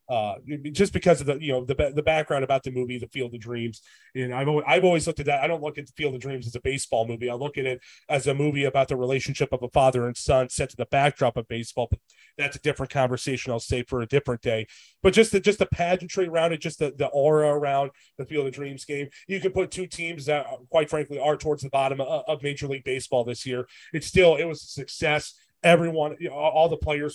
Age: 30-49